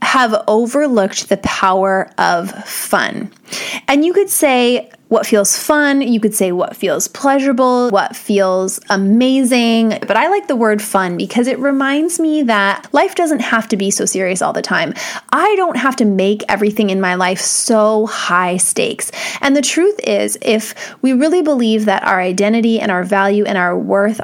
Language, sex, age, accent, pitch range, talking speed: English, female, 20-39, American, 200-255 Hz, 180 wpm